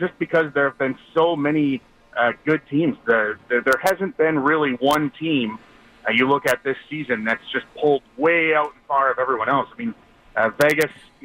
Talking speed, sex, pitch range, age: 210 wpm, male, 125-155 Hz, 30-49